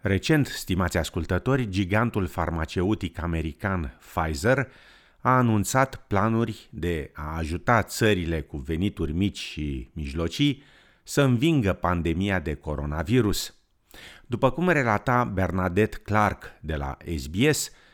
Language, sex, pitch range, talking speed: Romanian, male, 85-120 Hz, 105 wpm